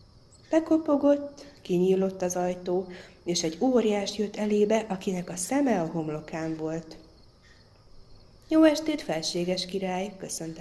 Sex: female